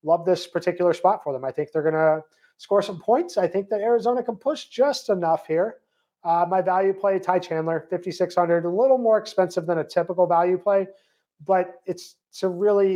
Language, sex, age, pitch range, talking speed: English, male, 30-49, 150-185 Hz, 200 wpm